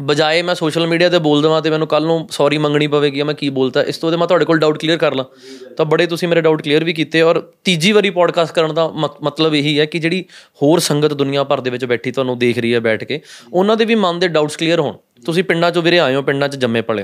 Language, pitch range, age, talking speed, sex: Punjabi, 140-175 Hz, 20-39, 270 wpm, male